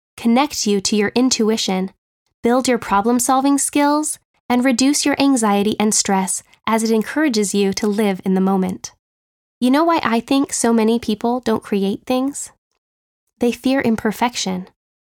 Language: English